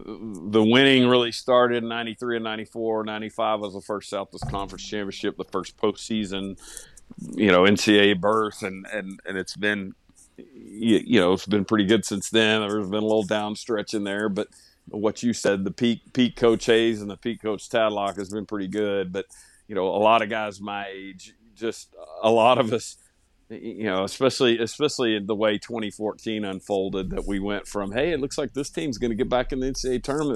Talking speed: 200 wpm